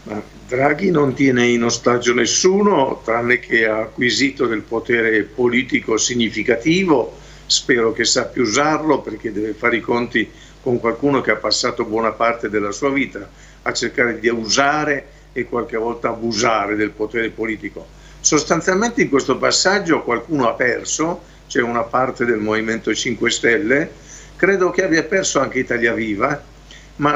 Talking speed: 145 wpm